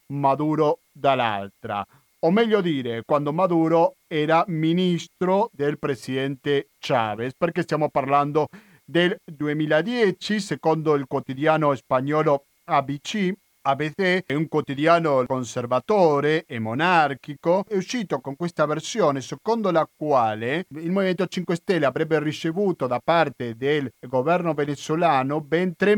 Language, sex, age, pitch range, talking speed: Italian, male, 40-59, 135-170 Hz, 115 wpm